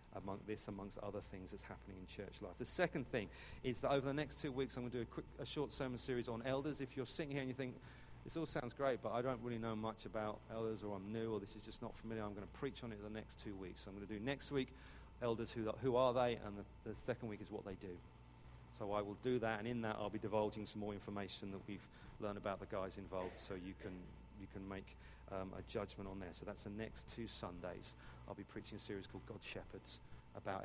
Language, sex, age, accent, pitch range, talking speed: English, male, 40-59, British, 100-125 Hz, 270 wpm